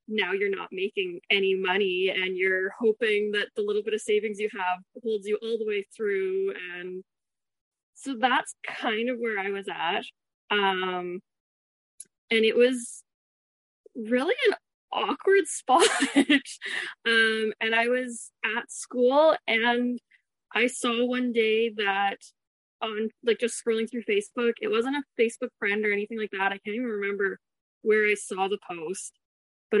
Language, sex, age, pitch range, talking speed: English, female, 20-39, 200-245 Hz, 155 wpm